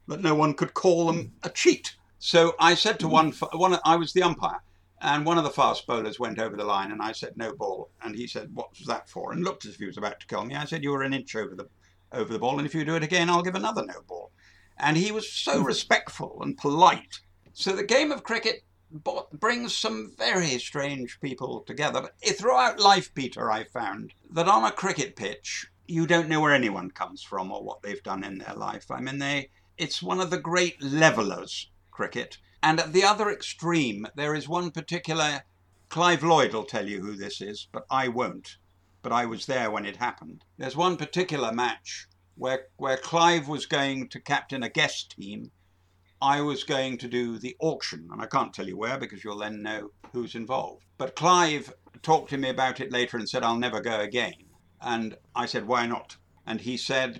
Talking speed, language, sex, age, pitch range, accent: 215 wpm, English, male, 60-79, 110-165 Hz, British